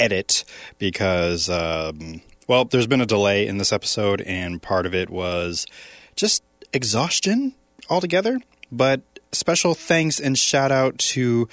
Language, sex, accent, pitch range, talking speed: English, male, American, 100-140 Hz, 135 wpm